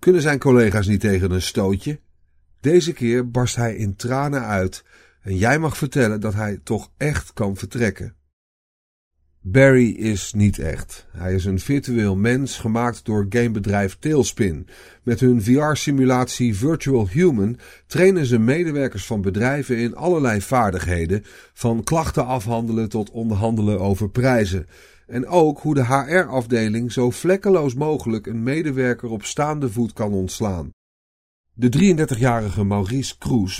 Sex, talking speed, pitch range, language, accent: male, 135 wpm, 100-130 Hz, Dutch, Dutch